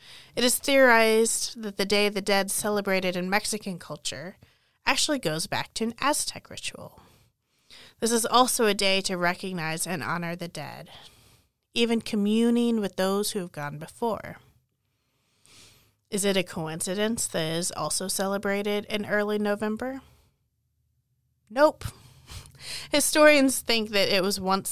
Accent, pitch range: American, 170-225 Hz